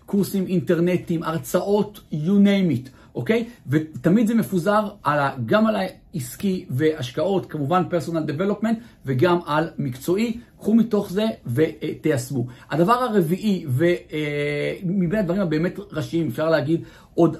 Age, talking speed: 50-69, 125 wpm